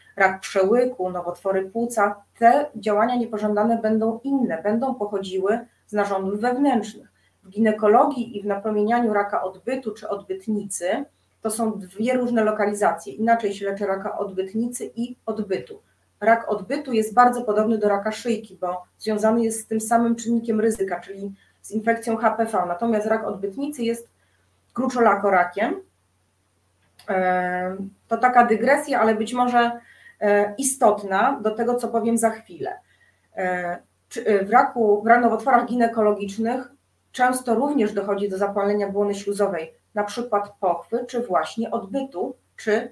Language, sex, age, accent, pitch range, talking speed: Polish, female, 30-49, native, 200-230 Hz, 130 wpm